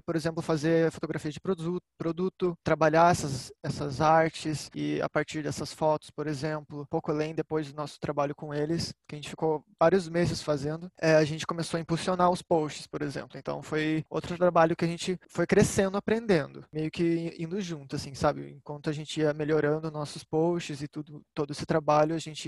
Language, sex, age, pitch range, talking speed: Portuguese, male, 20-39, 150-170 Hz, 200 wpm